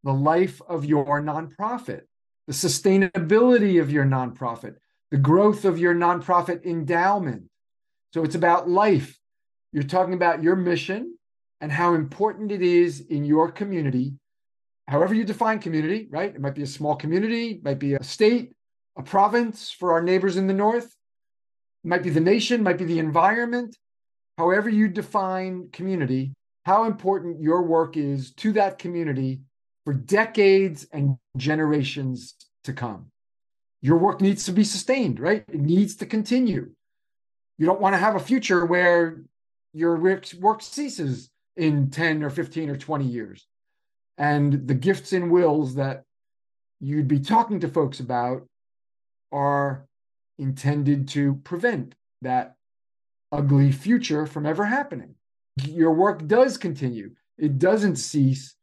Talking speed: 145 wpm